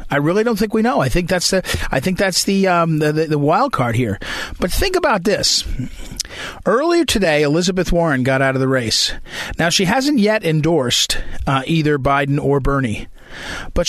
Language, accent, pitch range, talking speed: English, American, 140-180 Hz, 195 wpm